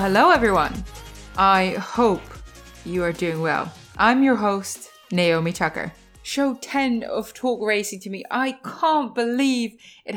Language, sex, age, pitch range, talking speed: English, female, 20-39, 175-225 Hz, 140 wpm